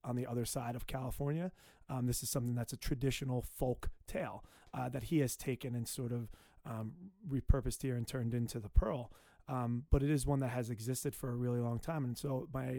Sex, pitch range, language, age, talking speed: male, 120-145 Hz, English, 30-49, 220 wpm